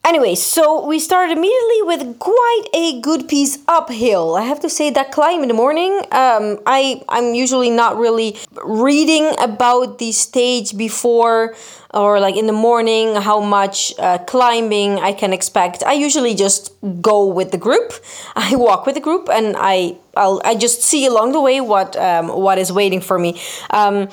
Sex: female